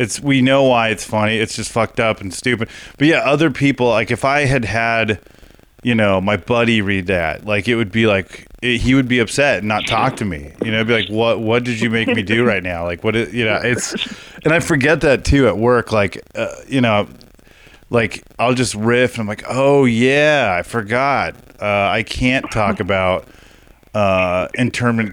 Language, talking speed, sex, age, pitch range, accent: English, 210 wpm, male, 30-49, 110-130 Hz, American